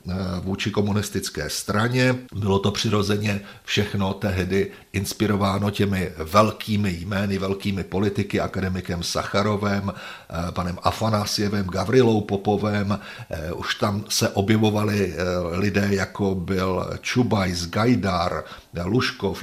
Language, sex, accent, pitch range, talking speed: Czech, male, native, 95-110 Hz, 95 wpm